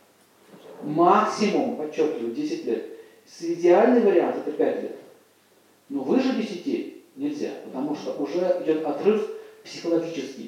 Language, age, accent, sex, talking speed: Russian, 40-59, native, male, 115 wpm